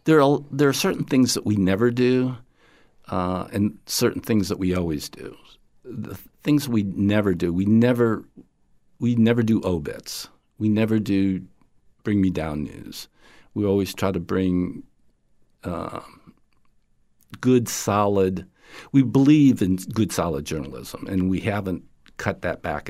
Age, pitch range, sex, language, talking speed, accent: 60-79, 80-105 Hz, male, English, 150 wpm, American